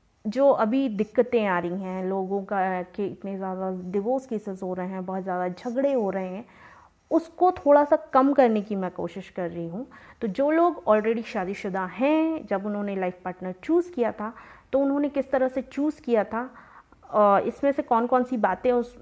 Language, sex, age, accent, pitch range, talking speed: Hindi, female, 30-49, native, 190-250 Hz, 190 wpm